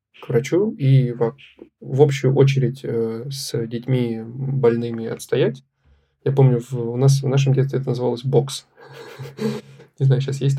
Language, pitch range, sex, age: Russian, 120-135 Hz, male, 20-39